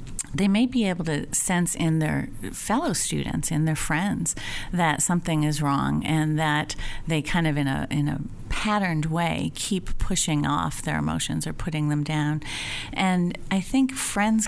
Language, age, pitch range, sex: English, 40-59, 145-175 Hz, female